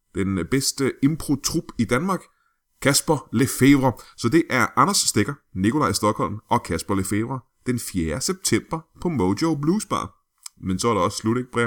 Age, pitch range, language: 30-49, 100-135 Hz, Danish